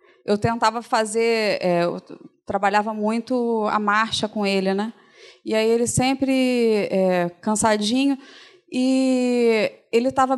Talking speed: 120 wpm